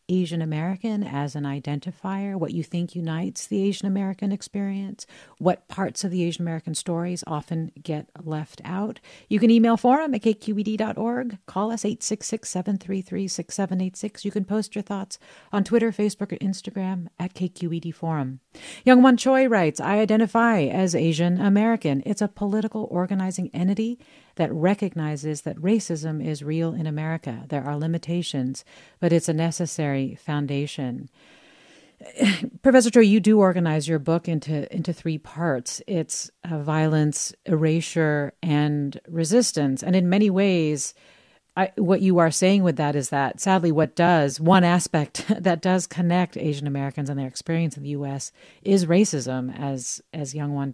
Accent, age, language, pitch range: American, 50-69, English, 155-200 Hz